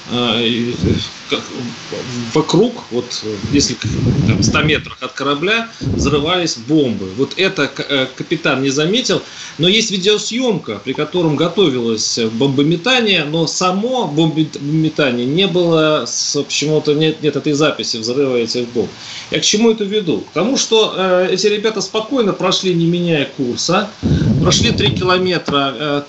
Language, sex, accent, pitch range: Russian, male, native, 140-195 Hz